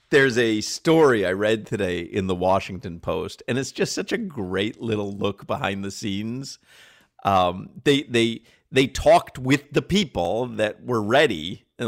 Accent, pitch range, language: American, 105-145 Hz, English